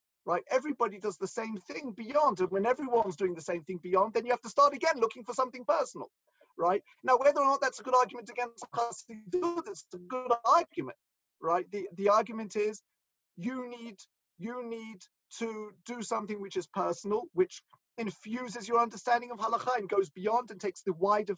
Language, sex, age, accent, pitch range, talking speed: English, male, 40-59, British, 185-240 Hz, 200 wpm